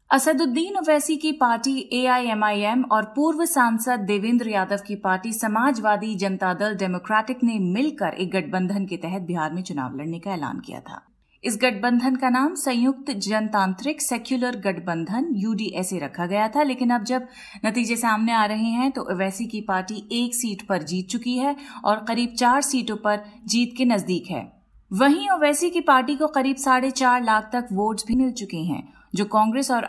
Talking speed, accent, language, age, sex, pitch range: 175 wpm, native, Hindi, 30-49, female, 200-255 Hz